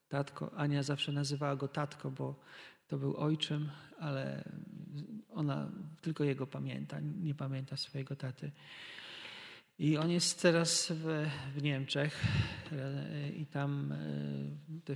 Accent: native